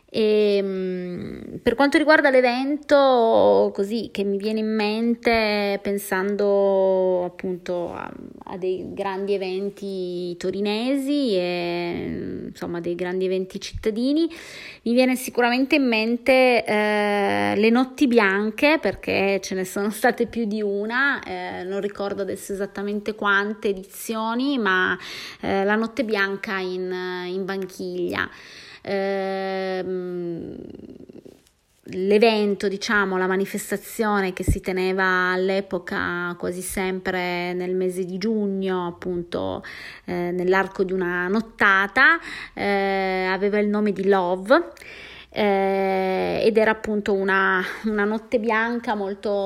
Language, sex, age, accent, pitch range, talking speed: Italian, female, 20-39, native, 185-220 Hz, 105 wpm